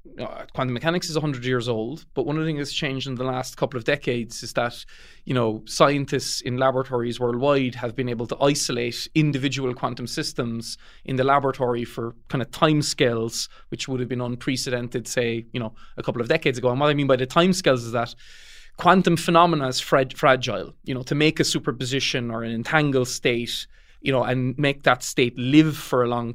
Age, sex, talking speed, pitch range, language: 20-39, male, 205 wpm, 120-150 Hz, English